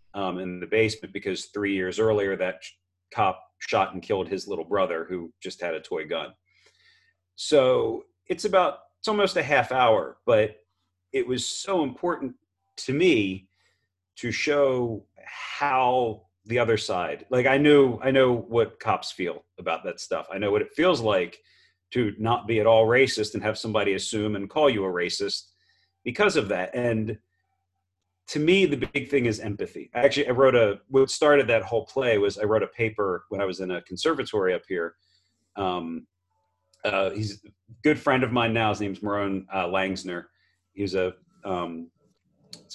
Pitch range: 95-130 Hz